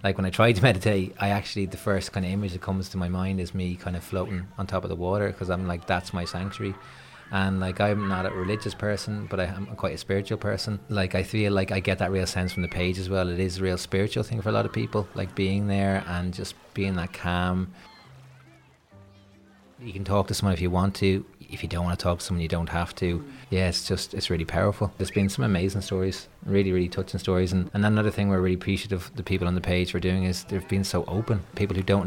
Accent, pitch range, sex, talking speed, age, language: Irish, 90-100 Hz, male, 260 wpm, 20-39, English